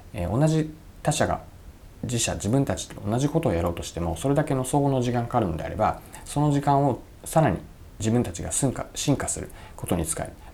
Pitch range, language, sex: 90-130 Hz, Japanese, male